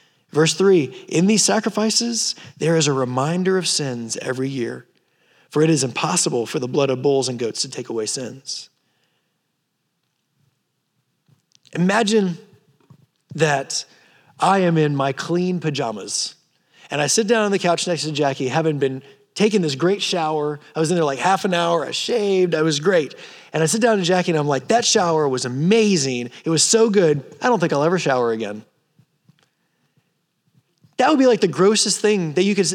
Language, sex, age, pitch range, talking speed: English, male, 20-39, 145-205 Hz, 180 wpm